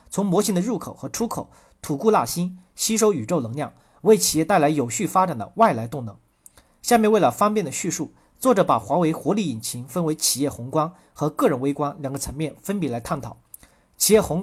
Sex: male